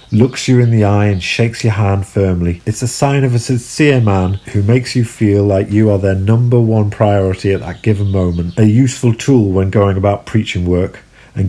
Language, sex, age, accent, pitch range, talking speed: English, male, 40-59, British, 95-115 Hz, 215 wpm